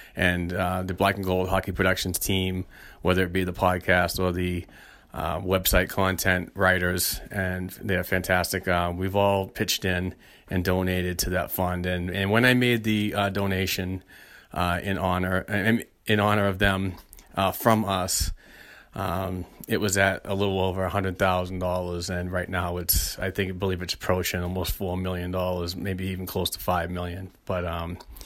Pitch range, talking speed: 90-100 Hz, 180 wpm